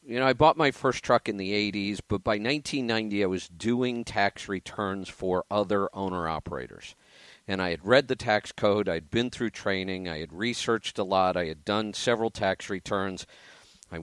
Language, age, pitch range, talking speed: English, 50-69, 100-130 Hz, 190 wpm